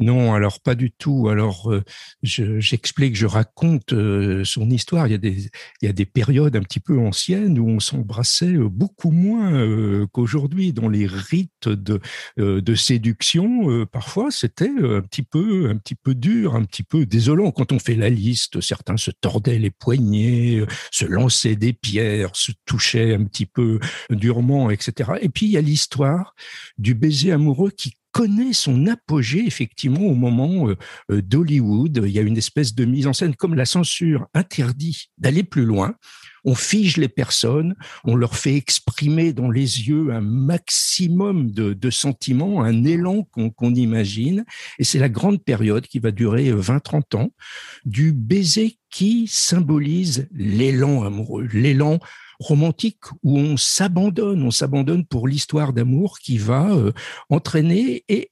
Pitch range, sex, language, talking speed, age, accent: 115-165 Hz, male, French, 165 wpm, 60-79, French